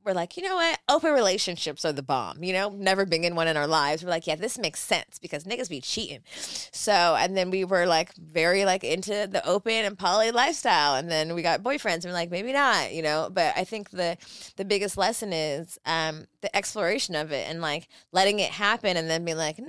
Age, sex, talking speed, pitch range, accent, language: 20-39, female, 235 wpm, 150-195 Hz, American, English